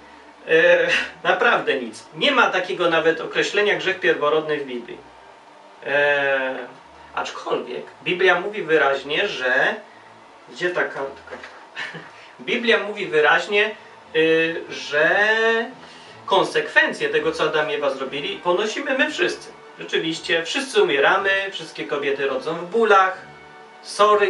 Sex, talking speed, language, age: male, 110 wpm, Polish, 30-49